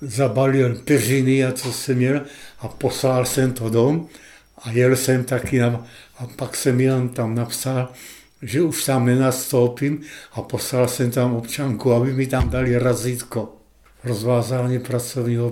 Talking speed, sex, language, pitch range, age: 145 wpm, male, Czech, 120-130 Hz, 60-79